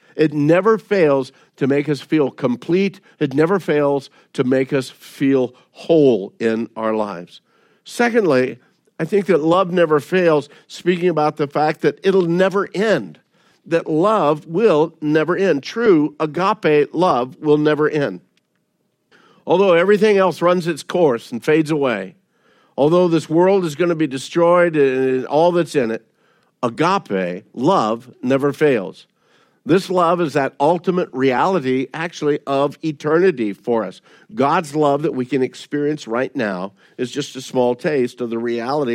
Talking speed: 150 wpm